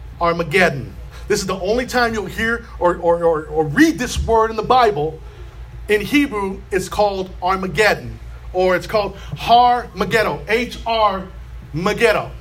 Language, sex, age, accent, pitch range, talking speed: English, male, 40-59, American, 185-240 Hz, 150 wpm